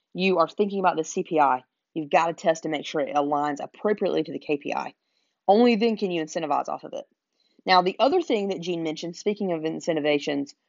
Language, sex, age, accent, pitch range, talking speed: English, female, 30-49, American, 155-200 Hz, 210 wpm